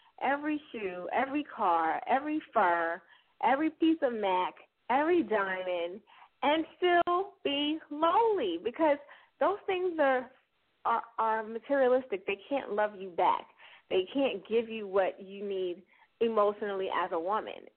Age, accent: 30-49, American